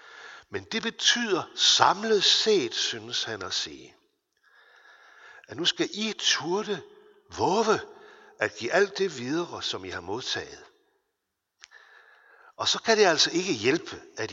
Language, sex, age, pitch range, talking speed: Danish, male, 60-79, 320-425 Hz, 135 wpm